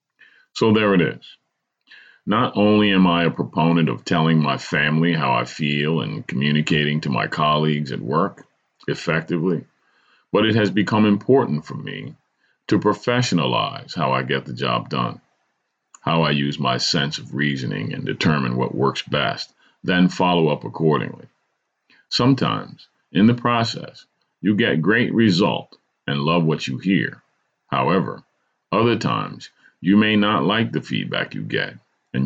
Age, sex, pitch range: 40-59, male, 75-105 Hz